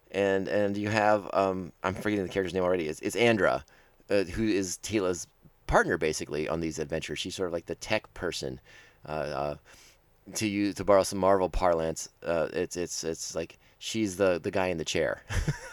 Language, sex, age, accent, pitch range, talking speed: English, male, 30-49, American, 95-125 Hz, 195 wpm